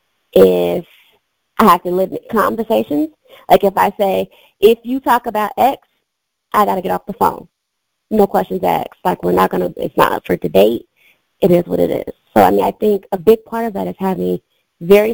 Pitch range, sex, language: 175-235 Hz, female, English